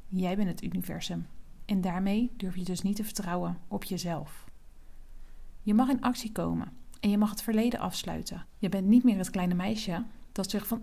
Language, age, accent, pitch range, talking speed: Dutch, 40-59, Dutch, 185-230 Hz, 195 wpm